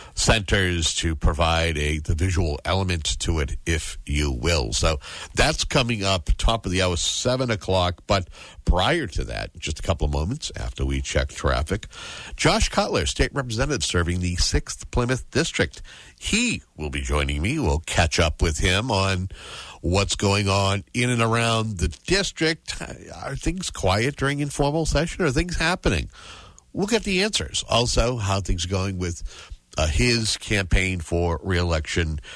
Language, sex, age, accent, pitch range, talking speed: English, male, 60-79, American, 80-120 Hz, 160 wpm